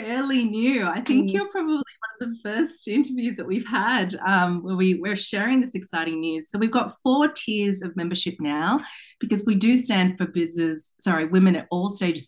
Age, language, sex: 30-49, English, female